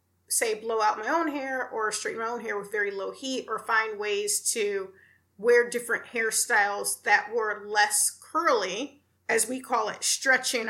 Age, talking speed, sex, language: 30-49, 175 wpm, female, English